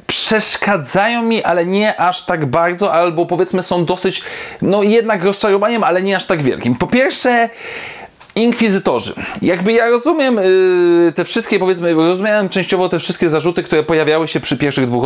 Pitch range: 160-210 Hz